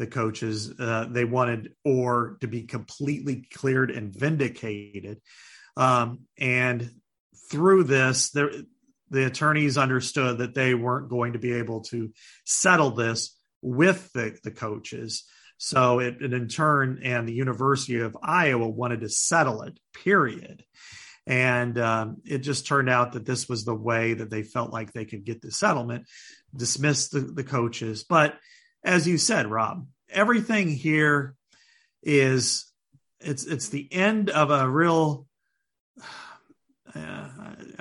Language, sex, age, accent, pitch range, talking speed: English, male, 40-59, American, 120-160 Hz, 140 wpm